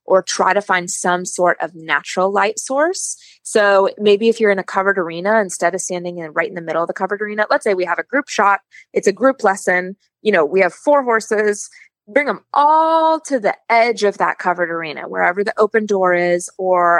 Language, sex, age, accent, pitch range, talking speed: English, female, 20-39, American, 180-260 Hz, 220 wpm